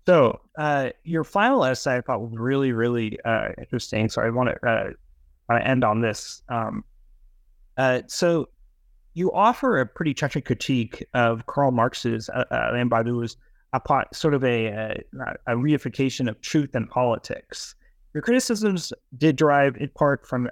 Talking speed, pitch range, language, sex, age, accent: 150 wpm, 115-150 Hz, English, male, 30-49, American